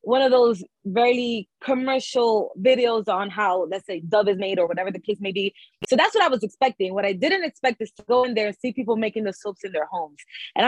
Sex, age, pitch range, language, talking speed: female, 20-39, 205-260 Hz, English, 245 wpm